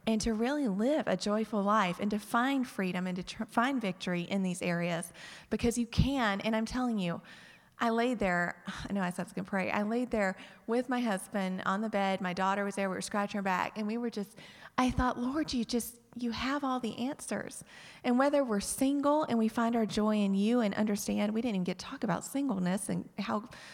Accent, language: American, English